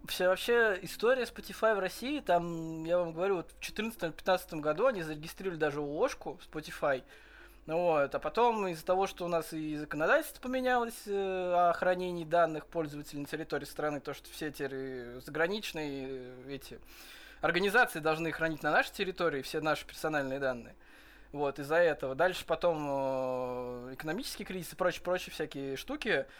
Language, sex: Russian, male